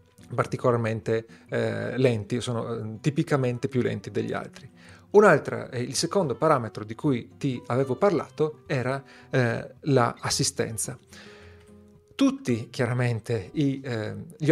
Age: 40-59